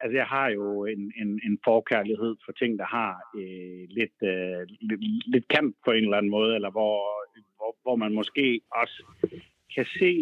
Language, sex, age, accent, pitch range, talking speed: Danish, male, 60-79, native, 110-140 Hz, 190 wpm